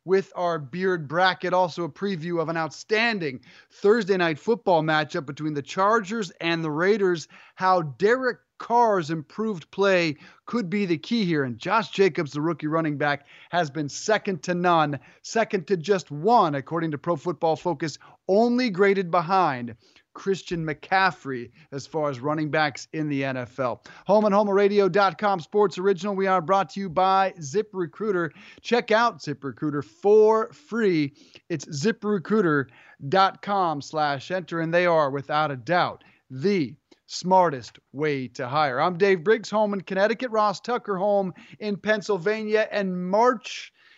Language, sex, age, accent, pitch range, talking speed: English, male, 30-49, American, 155-205 Hz, 145 wpm